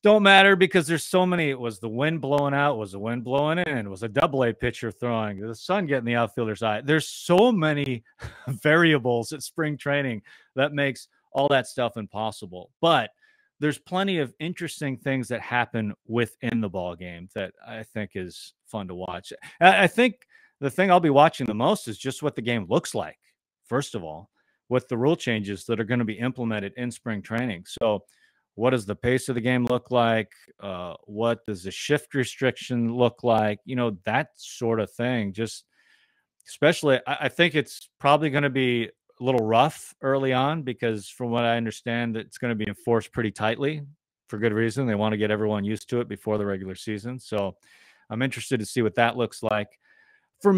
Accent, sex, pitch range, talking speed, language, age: American, male, 110-145 Hz, 200 wpm, English, 30-49